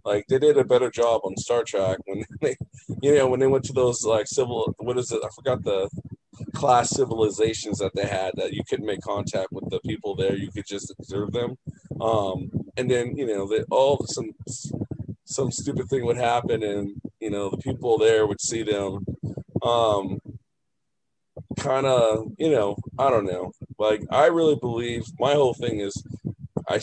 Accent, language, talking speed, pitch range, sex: American, English, 190 wpm, 100-130 Hz, male